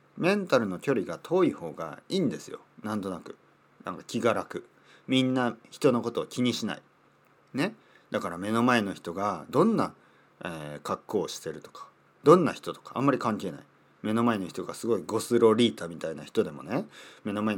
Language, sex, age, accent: Japanese, male, 40-59, native